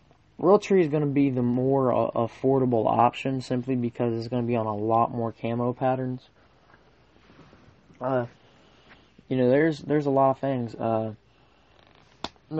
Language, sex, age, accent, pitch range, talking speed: English, male, 20-39, American, 120-140 Hz, 155 wpm